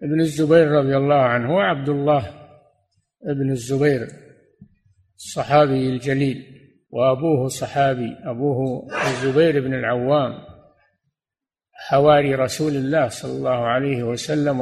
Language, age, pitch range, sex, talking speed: Arabic, 50-69, 120-150 Hz, male, 100 wpm